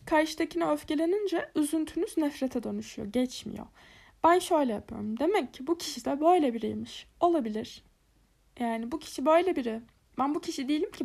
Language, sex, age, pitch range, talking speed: Turkish, female, 20-39, 250-320 Hz, 145 wpm